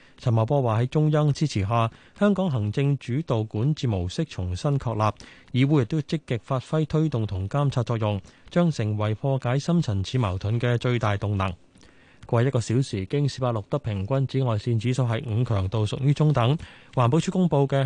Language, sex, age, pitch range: Chinese, male, 20-39, 110-145 Hz